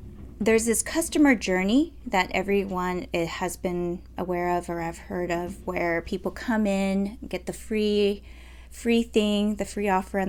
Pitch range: 175-225 Hz